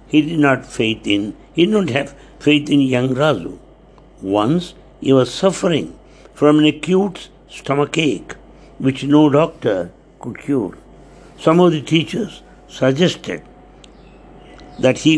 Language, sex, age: English, male, 60-79